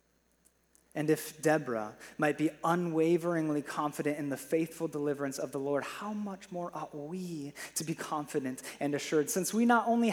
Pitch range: 145-185 Hz